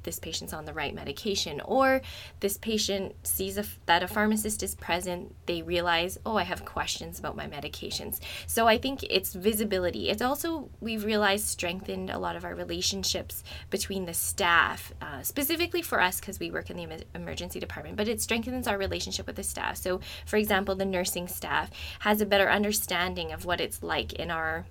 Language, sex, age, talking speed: English, female, 20-39, 185 wpm